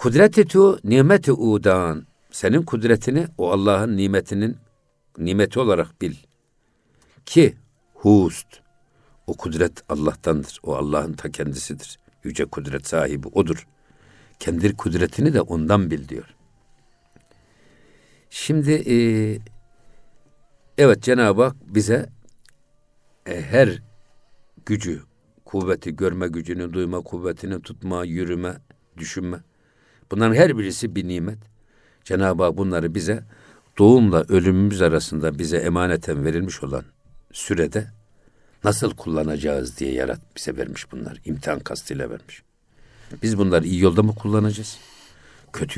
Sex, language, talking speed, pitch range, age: male, Turkish, 105 wpm, 90-115 Hz, 60-79